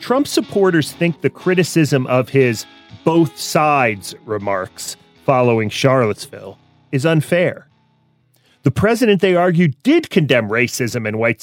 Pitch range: 135-185 Hz